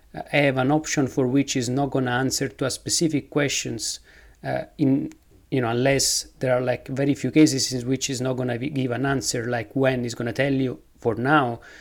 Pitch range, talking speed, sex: 125-150 Hz, 225 wpm, male